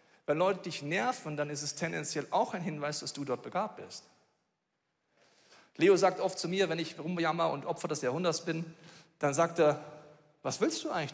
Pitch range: 145-180 Hz